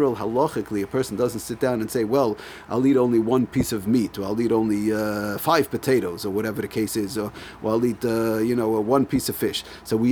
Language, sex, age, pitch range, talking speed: English, male, 40-59, 110-140 Hz, 235 wpm